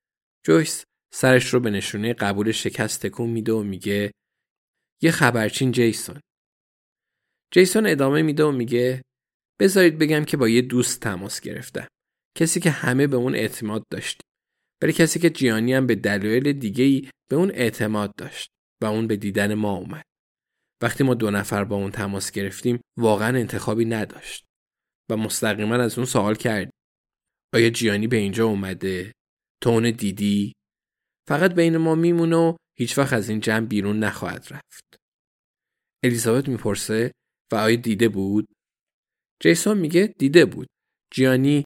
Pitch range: 105-140 Hz